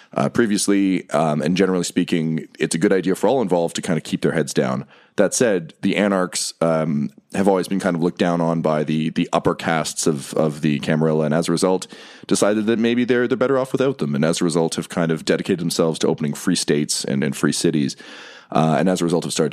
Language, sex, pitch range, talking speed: English, male, 80-95 Hz, 245 wpm